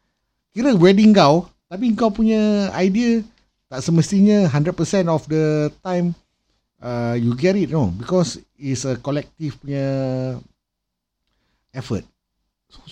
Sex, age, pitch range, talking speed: male, 50-69, 105-150 Hz, 115 wpm